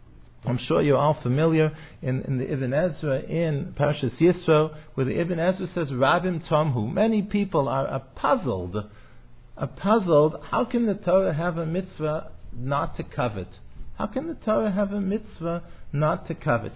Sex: male